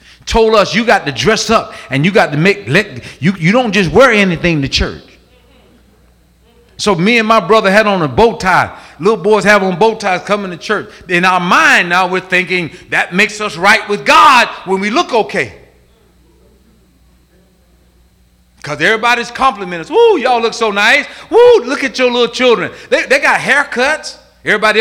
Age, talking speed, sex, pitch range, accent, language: 40-59, 185 wpm, male, 160-225 Hz, American, English